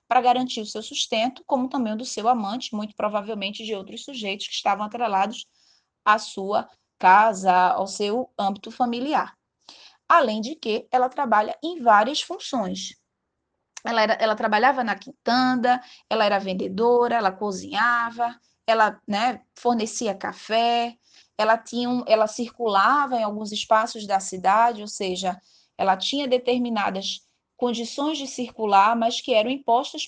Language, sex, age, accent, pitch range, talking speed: Portuguese, female, 20-39, Brazilian, 210-255 Hz, 140 wpm